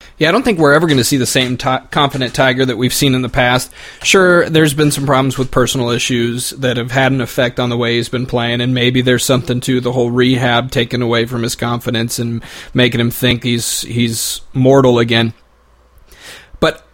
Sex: male